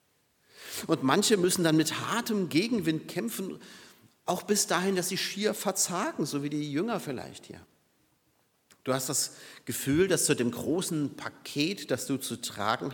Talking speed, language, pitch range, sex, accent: 160 wpm, German, 130-190 Hz, male, German